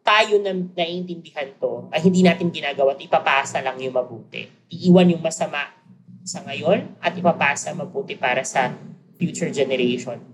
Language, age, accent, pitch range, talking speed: Filipino, 20-39, native, 145-195 Hz, 135 wpm